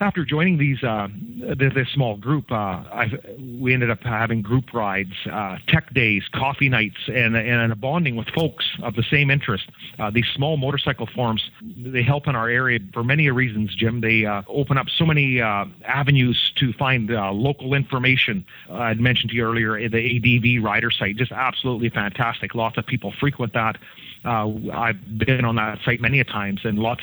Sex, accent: male, American